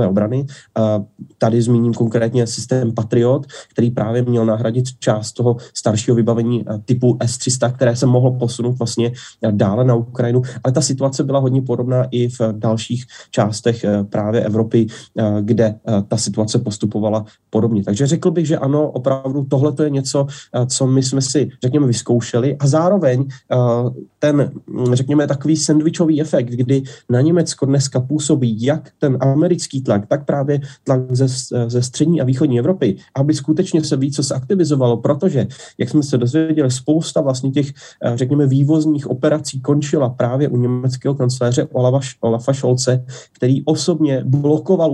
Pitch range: 120-145 Hz